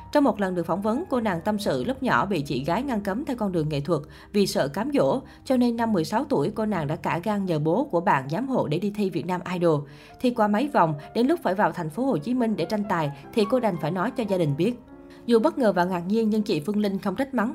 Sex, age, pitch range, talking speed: female, 20-39, 175-235 Hz, 295 wpm